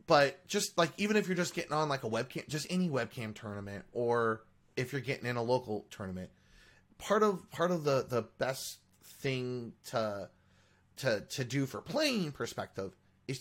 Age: 30-49